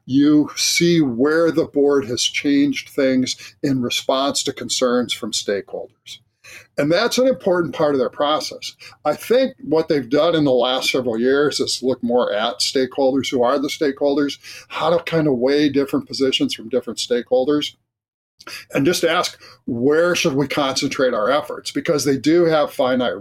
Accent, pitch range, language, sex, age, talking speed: American, 130-165 Hz, English, male, 50-69, 170 wpm